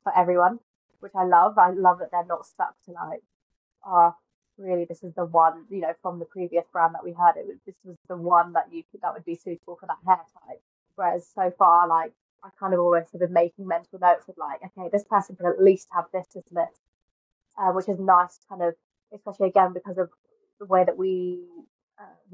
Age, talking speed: 20-39, 230 wpm